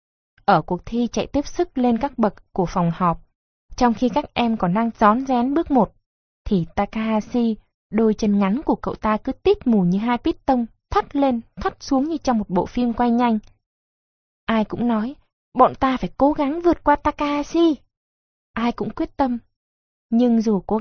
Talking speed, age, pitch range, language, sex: 190 wpm, 20-39, 200-255 Hz, Vietnamese, female